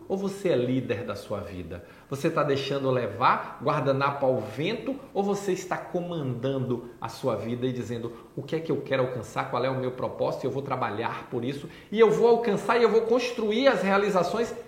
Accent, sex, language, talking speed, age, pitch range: Brazilian, male, Portuguese, 205 wpm, 40-59, 135-190 Hz